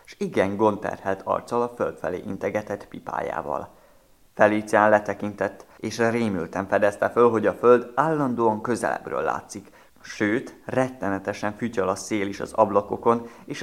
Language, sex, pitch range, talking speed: Hungarian, male, 100-130 Hz, 130 wpm